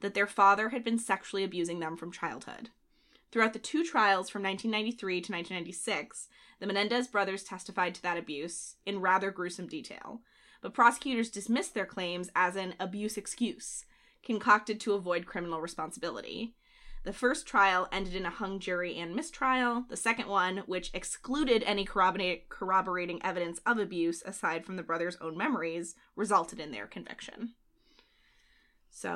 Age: 20-39